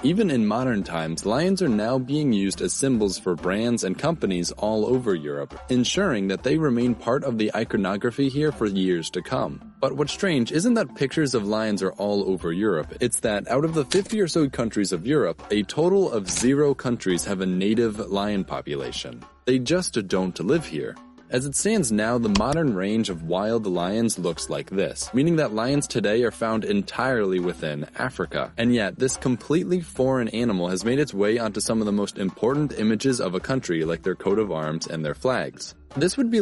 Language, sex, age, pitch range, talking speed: English, male, 20-39, 95-135 Hz, 200 wpm